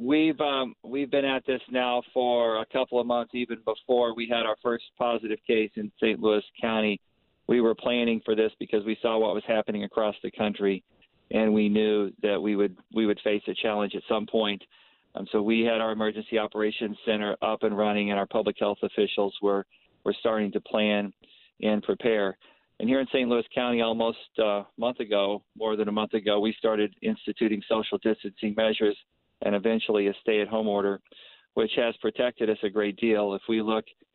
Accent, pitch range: American, 105-115 Hz